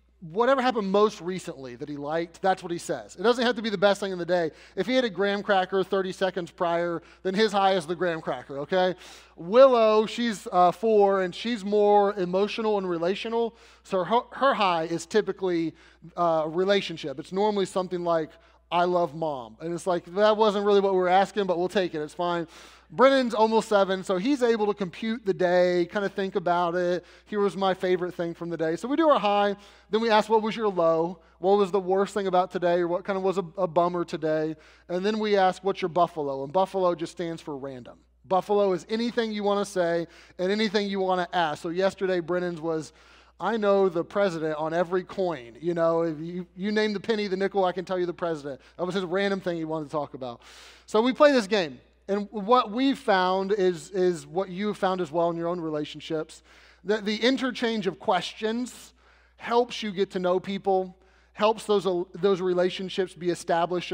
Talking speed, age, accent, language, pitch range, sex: 215 wpm, 30-49, American, English, 170-205 Hz, male